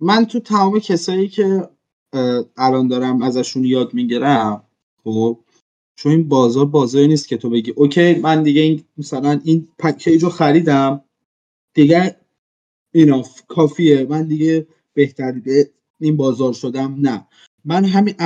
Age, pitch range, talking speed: 20-39, 140-175 Hz, 140 wpm